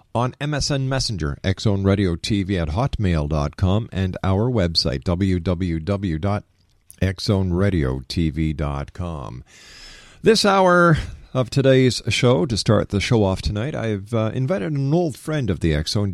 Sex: male